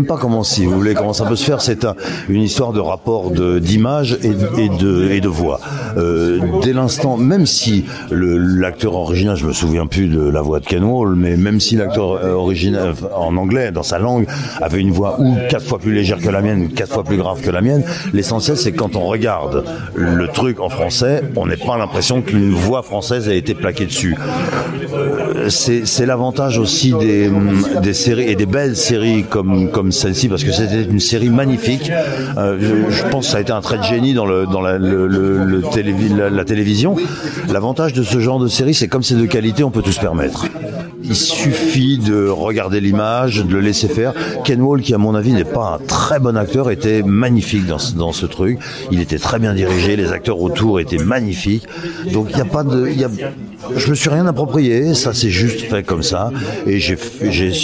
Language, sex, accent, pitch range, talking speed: French, male, French, 95-125 Hz, 220 wpm